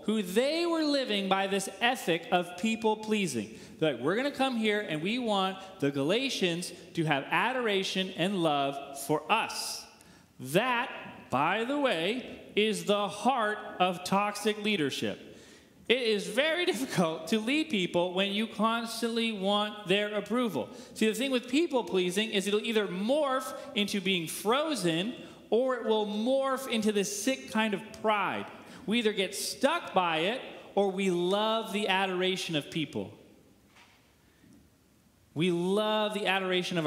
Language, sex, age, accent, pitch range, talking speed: English, male, 30-49, American, 170-220 Hz, 150 wpm